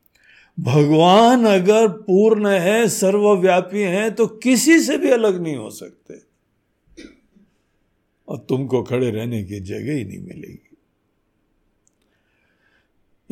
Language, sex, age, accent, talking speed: Hindi, male, 60-79, native, 105 wpm